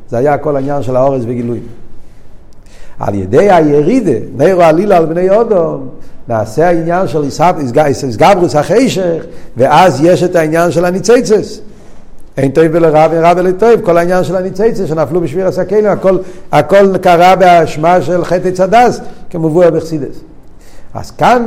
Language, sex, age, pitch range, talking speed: Hebrew, male, 60-79, 140-180 Hz, 140 wpm